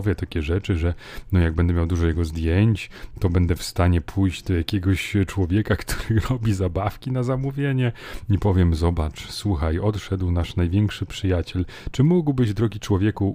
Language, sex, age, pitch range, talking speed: Polish, male, 30-49, 90-115 Hz, 155 wpm